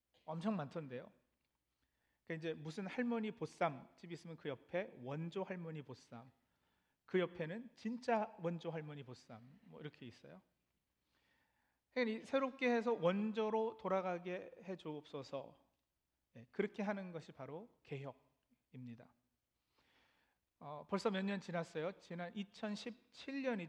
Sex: male